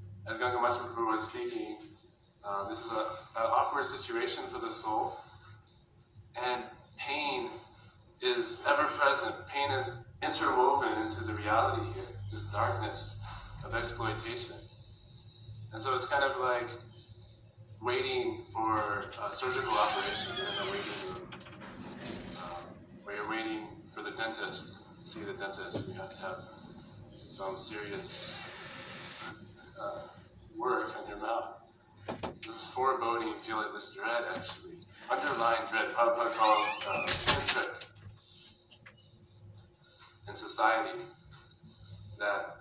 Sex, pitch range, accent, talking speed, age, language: male, 105-120 Hz, American, 115 wpm, 20-39, English